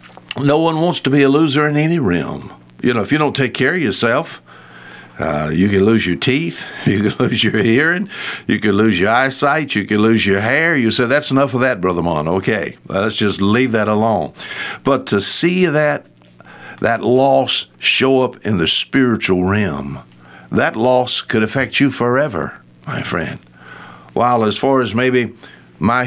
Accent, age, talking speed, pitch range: American, 60-79, 185 wpm, 100-140 Hz